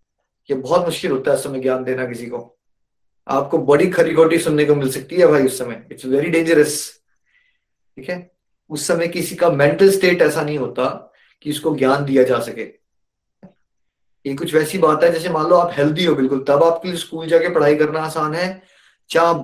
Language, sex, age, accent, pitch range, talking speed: Hindi, male, 20-39, native, 135-180 Hz, 190 wpm